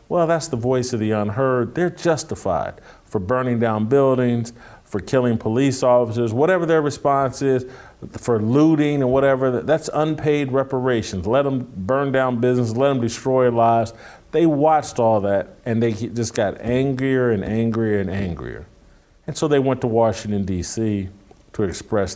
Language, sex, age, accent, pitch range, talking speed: English, male, 50-69, American, 110-135 Hz, 160 wpm